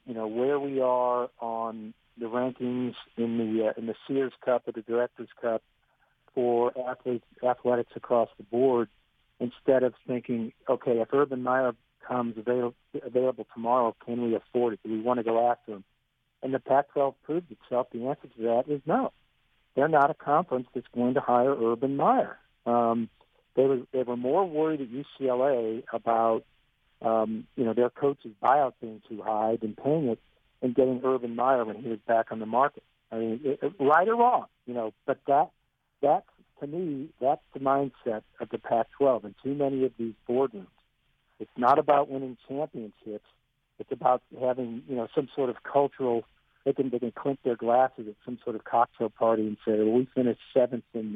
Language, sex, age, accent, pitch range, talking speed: English, male, 50-69, American, 115-130 Hz, 190 wpm